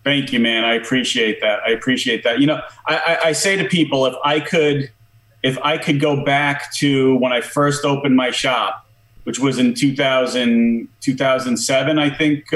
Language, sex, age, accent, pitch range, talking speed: English, male, 30-49, American, 125-150 Hz, 185 wpm